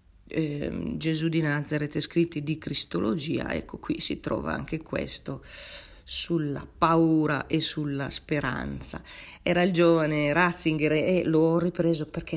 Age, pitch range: 40-59, 145-175 Hz